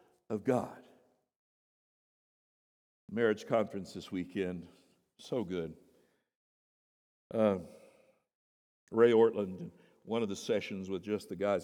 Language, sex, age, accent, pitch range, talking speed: English, male, 60-79, American, 100-135 Hz, 100 wpm